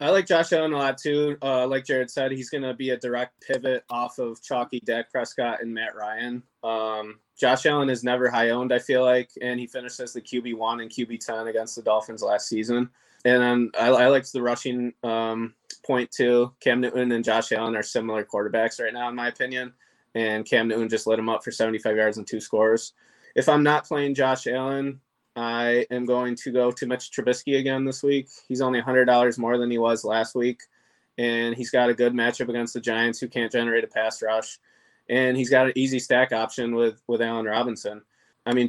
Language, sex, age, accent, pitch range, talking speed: English, male, 20-39, American, 115-130 Hz, 220 wpm